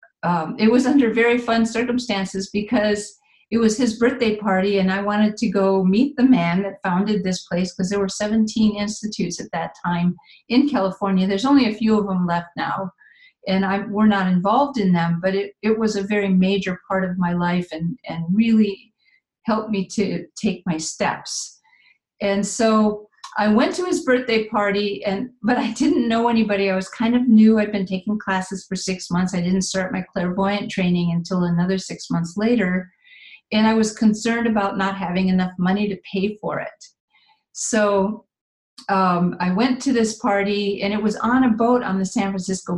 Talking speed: 190 wpm